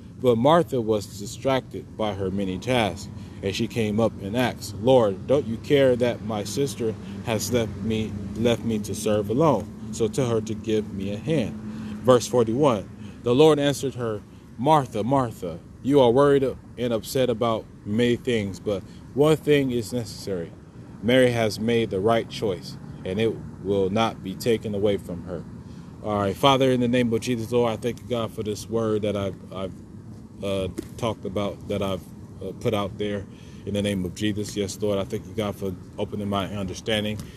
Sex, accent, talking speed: male, American, 190 wpm